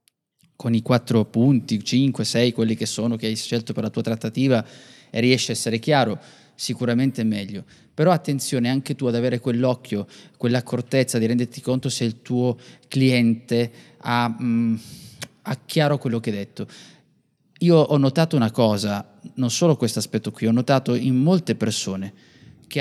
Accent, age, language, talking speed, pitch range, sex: native, 20-39, Italian, 165 wpm, 115-140 Hz, male